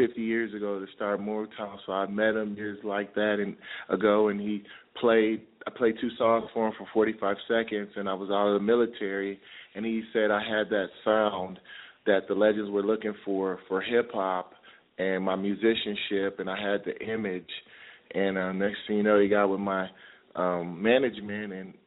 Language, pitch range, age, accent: English, 95-105 Hz, 30-49, American